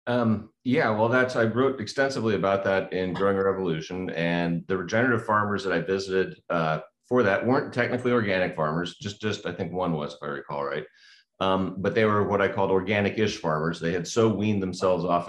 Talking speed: 200 wpm